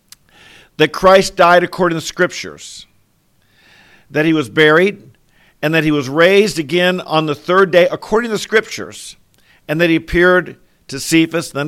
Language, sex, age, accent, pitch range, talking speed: English, male, 50-69, American, 145-180 Hz, 165 wpm